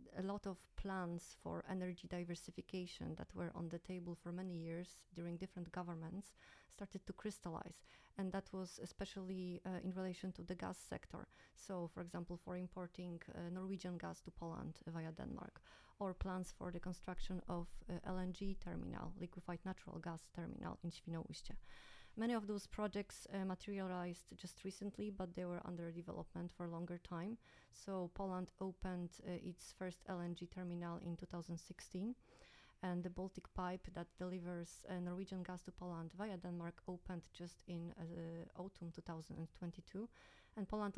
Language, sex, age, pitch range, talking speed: Danish, female, 30-49, 170-190 Hz, 155 wpm